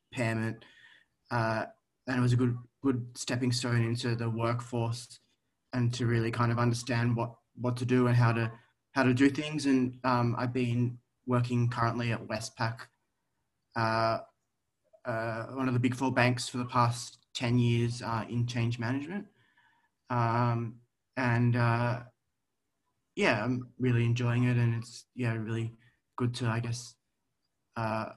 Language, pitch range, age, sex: English, 115-130 Hz, 20-39, male